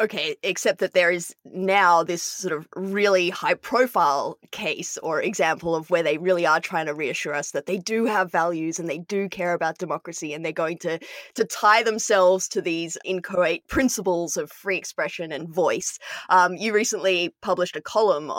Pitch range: 170-210 Hz